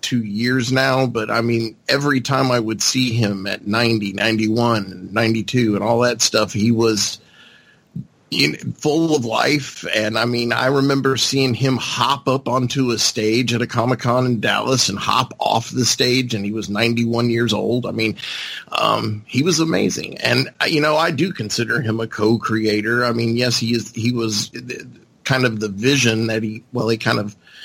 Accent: American